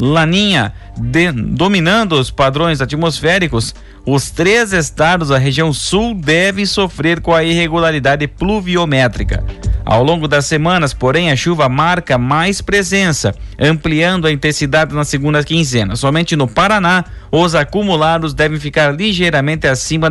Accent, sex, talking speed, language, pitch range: Brazilian, male, 130 wpm, Portuguese, 130-170 Hz